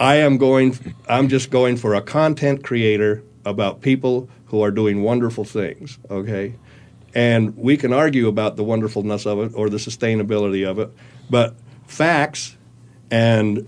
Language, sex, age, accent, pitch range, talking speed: English, male, 60-79, American, 105-125 Hz, 155 wpm